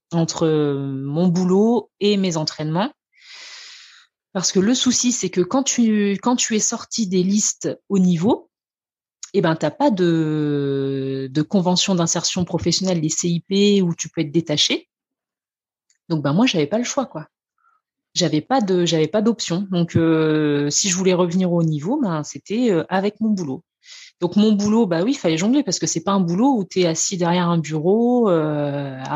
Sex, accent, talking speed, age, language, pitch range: female, French, 180 wpm, 30-49, French, 155-210 Hz